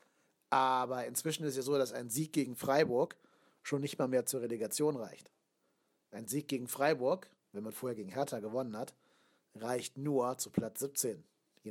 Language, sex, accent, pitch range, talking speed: German, male, German, 120-145 Hz, 180 wpm